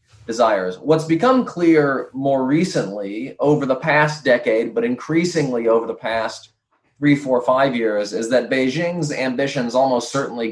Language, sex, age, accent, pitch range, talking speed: English, male, 20-39, American, 115-140 Hz, 145 wpm